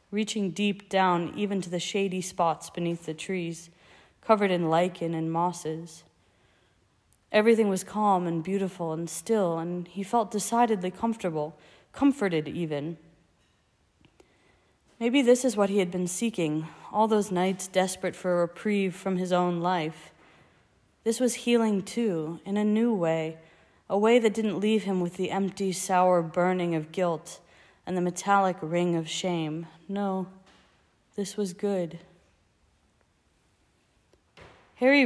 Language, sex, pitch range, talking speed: English, female, 165-205 Hz, 140 wpm